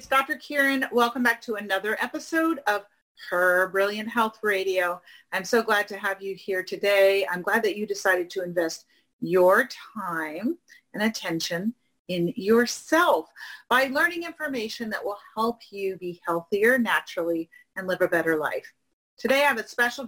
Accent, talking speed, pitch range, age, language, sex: American, 160 wpm, 185-245 Hz, 40-59, English, female